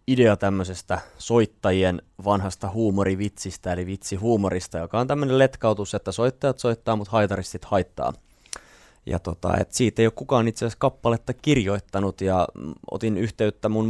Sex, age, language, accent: male, 20-39, Finnish, native